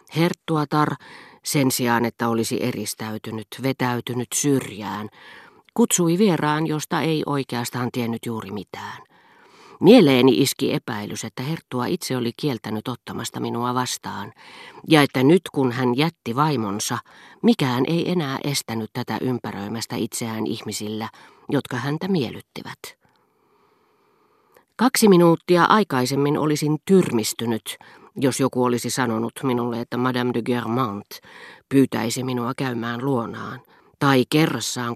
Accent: native